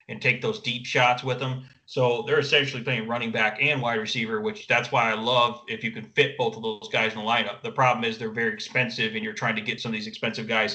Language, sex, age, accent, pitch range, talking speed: English, male, 30-49, American, 110-130 Hz, 270 wpm